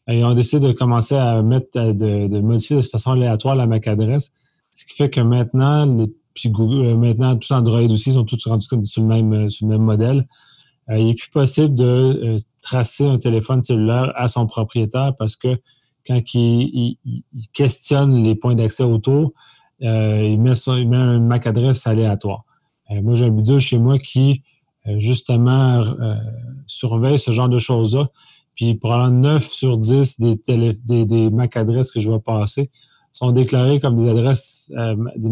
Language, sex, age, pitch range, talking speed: French, male, 30-49, 115-130 Hz, 185 wpm